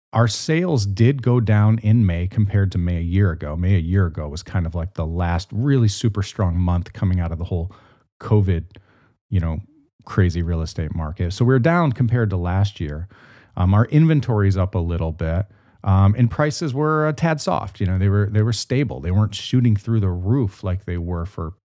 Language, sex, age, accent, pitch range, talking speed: English, male, 30-49, American, 95-120 Hz, 220 wpm